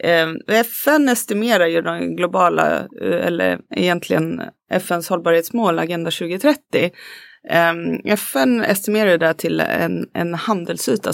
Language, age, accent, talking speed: Swedish, 30-49, native, 95 wpm